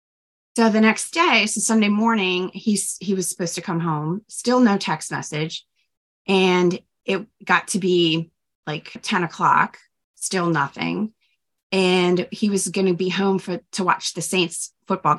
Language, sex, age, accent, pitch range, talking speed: English, female, 30-49, American, 160-200 Hz, 160 wpm